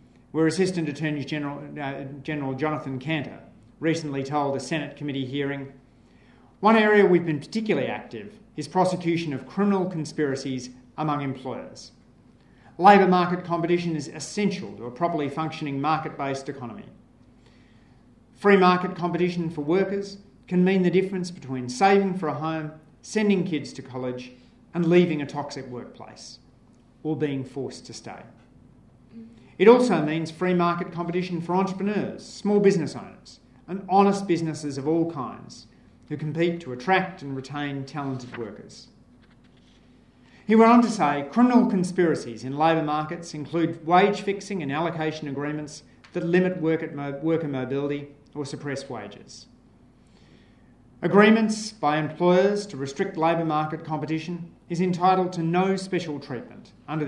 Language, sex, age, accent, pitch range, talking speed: English, male, 40-59, Australian, 135-180 Hz, 135 wpm